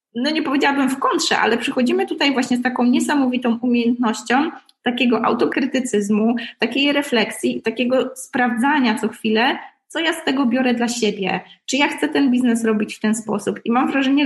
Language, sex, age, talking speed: Polish, female, 20-39, 170 wpm